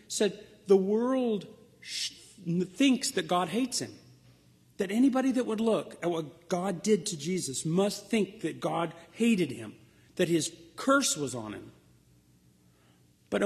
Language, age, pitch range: English, 40-59, 145-200 Hz